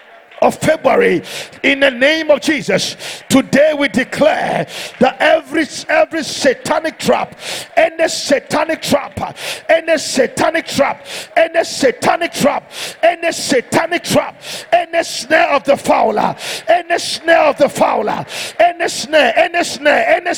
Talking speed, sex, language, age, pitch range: 140 wpm, male, English, 50-69, 275-310 Hz